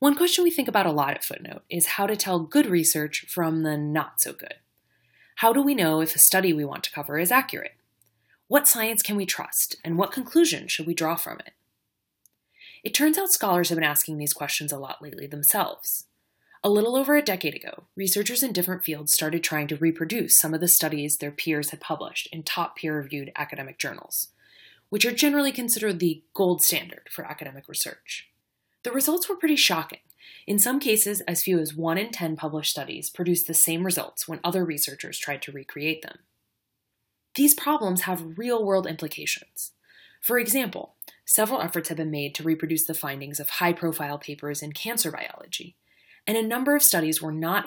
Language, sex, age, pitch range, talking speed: English, female, 20-39, 155-215 Hz, 195 wpm